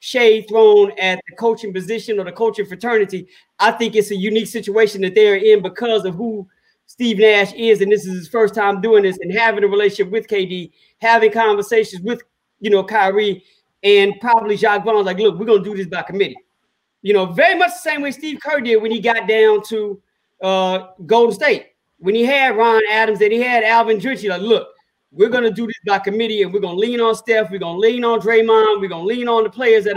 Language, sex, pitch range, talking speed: English, male, 205-250 Hz, 230 wpm